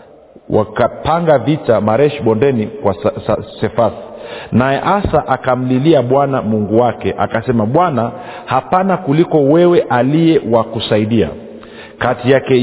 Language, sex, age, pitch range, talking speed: Swahili, male, 50-69, 110-150 Hz, 105 wpm